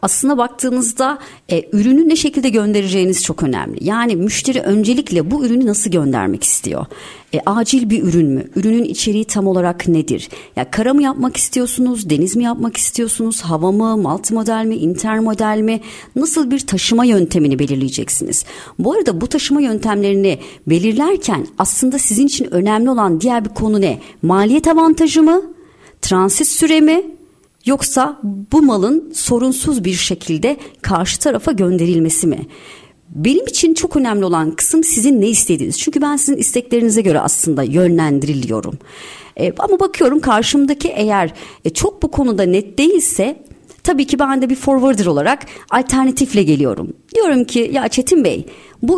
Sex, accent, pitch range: male, native, 190-280 Hz